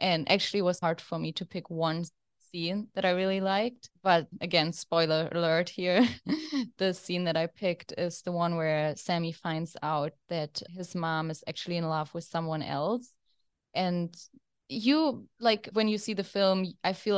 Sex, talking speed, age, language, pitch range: female, 180 wpm, 20-39, English, 165-190 Hz